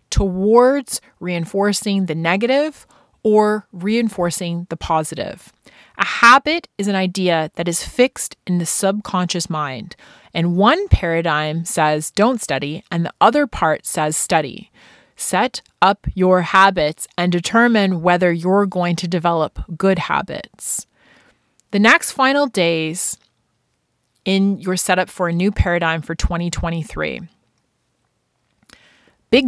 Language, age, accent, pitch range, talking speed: English, 30-49, American, 165-205 Hz, 120 wpm